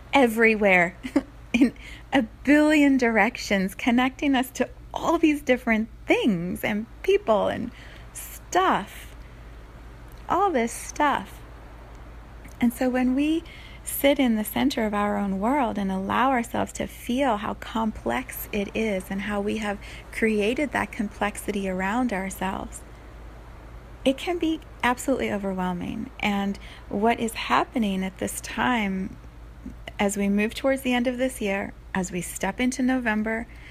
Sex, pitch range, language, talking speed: female, 200-265 Hz, English, 135 wpm